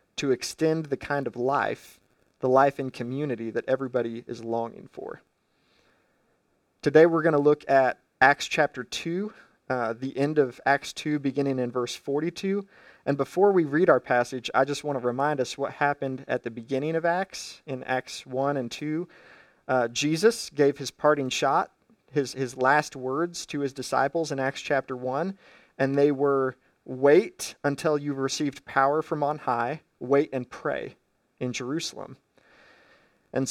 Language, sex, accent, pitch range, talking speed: English, male, American, 135-165 Hz, 160 wpm